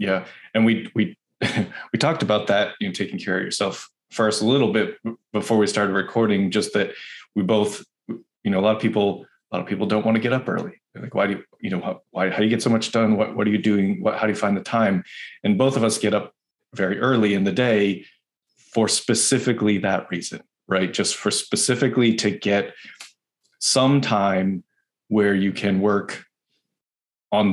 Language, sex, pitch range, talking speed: English, male, 95-115 Hz, 210 wpm